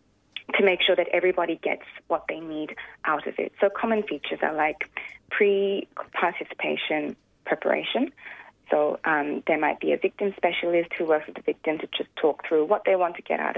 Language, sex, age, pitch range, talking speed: English, female, 20-39, 150-200 Hz, 185 wpm